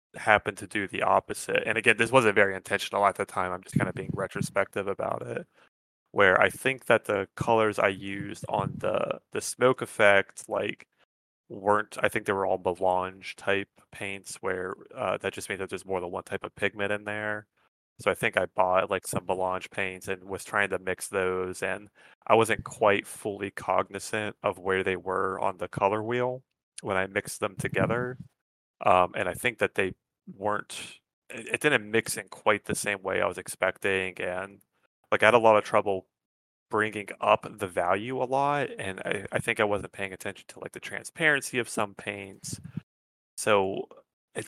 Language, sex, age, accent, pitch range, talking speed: English, male, 20-39, American, 95-115 Hz, 195 wpm